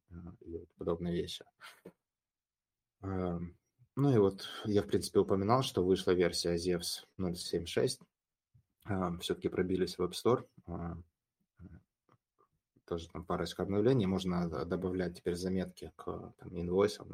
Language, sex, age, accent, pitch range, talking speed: Russian, male, 20-39, native, 85-95 Hz, 110 wpm